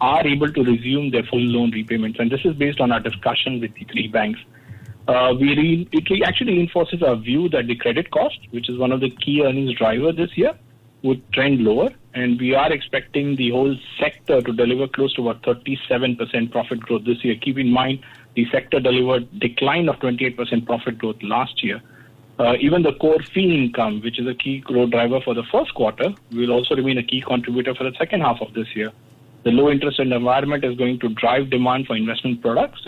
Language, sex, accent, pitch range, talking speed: English, male, Indian, 120-135 Hz, 210 wpm